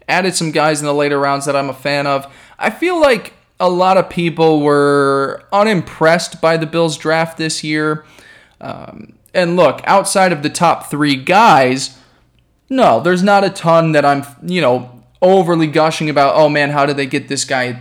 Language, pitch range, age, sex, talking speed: English, 140-185 Hz, 20-39, male, 190 wpm